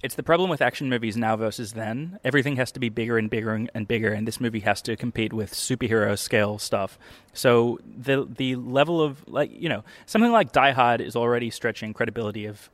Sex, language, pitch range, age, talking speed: male, English, 115-140 Hz, 20-39, 210 wpm